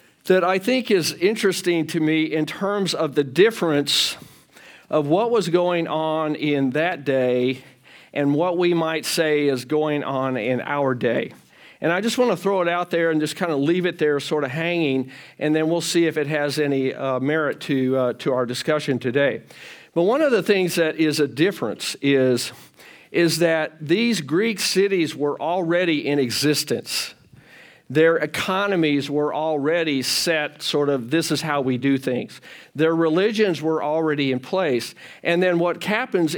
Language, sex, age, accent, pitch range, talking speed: English, male, 50-69, American, 145-175 Hz, 180 wpm